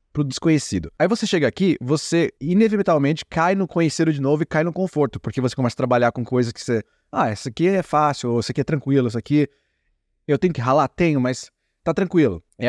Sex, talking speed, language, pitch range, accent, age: male, 220 wpm, Portuguese, 125-170 Hz, Brazilian, 20-39